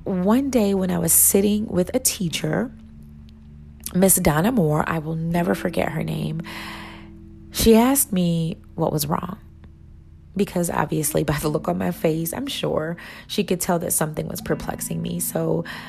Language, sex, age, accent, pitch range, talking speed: English, female, 30-49, American, 155-200 Hz, 160 wpm